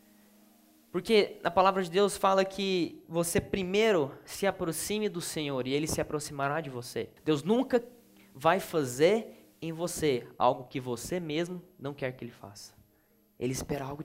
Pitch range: 150-205 Hz